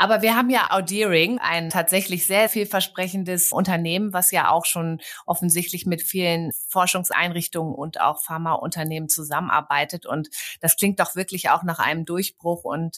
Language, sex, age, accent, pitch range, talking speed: German, female, 30-49, German, 145-180 Hz, 150 wpm